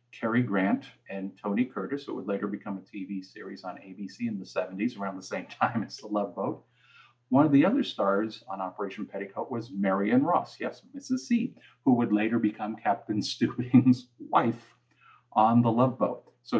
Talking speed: 185 wpm